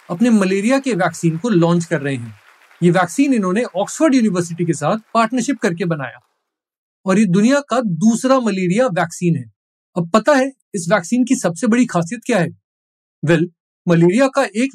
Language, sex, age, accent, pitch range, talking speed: Hindi, male, 30-49, native, 175-235 Hz, 75 wpm